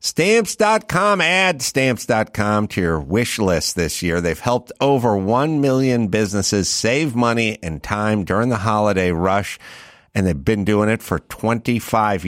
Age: 50-69